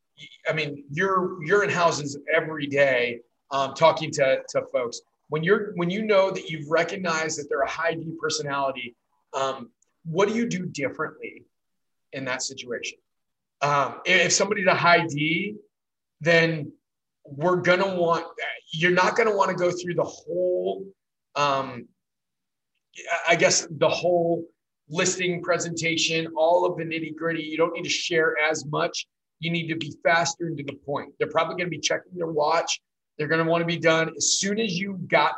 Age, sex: 30-49, male